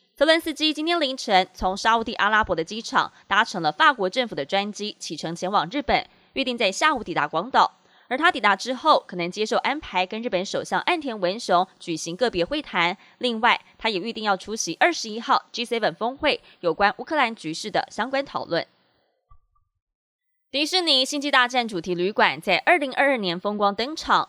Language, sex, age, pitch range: Chinese, female, 20-39, 190-270 Hz